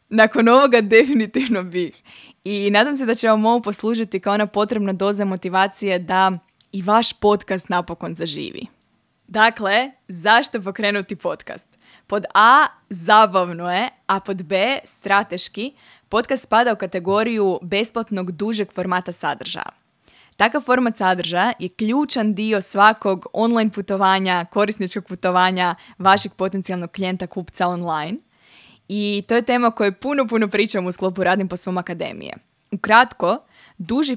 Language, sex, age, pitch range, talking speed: Croatian, female, 20-39, 185-220 Hz, 130 wpm